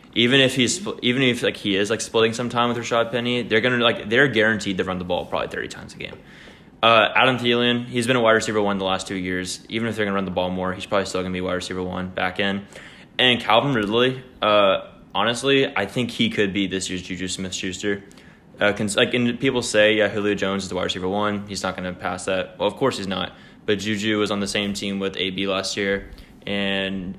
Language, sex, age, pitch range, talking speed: English, male, 20-39, 95-110 Hz, 245 wpm